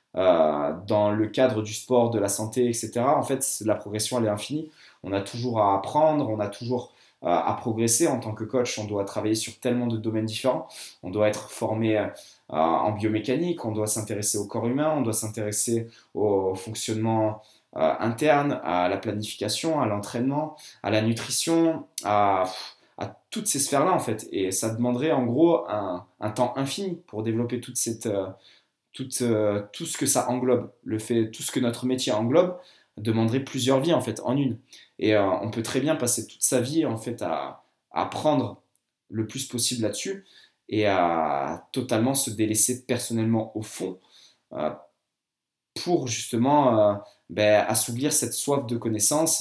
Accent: French